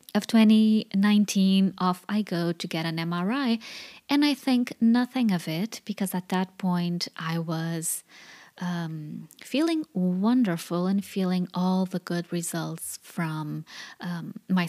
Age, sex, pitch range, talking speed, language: 20-39, female, 175-235 Hz, 135 wpm, English